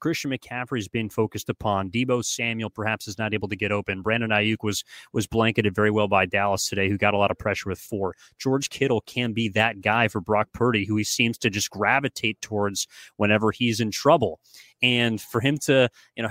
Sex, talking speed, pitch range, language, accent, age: male, 215 wpm, 105-130 Hz, English, American, 30-49